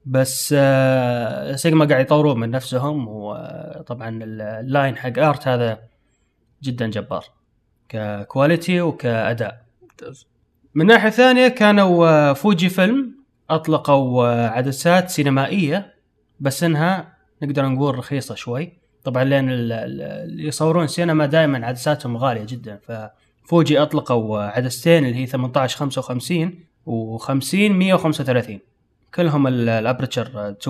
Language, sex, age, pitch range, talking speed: Arabic, male, 20-39, 125-165 Hz, 105 wpm